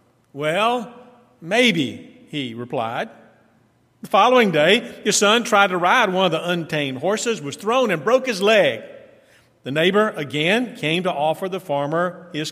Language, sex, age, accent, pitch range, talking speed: English, male, 50-69, American, 145-205 Hz, 155 wpm